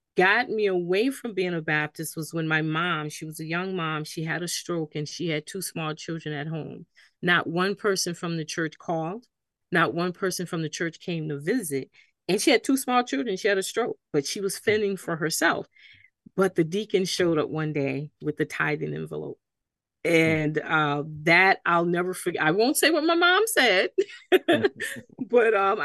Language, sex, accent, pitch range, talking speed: English, female, American, 160-200 Hz, 200 wpm